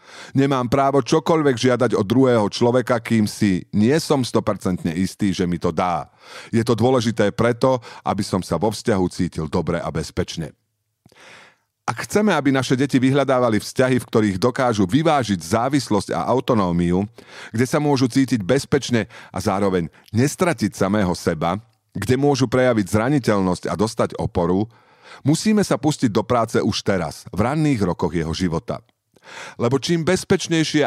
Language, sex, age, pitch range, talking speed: Slovak, male, 40-59, 95-130 Hz, 150 wpm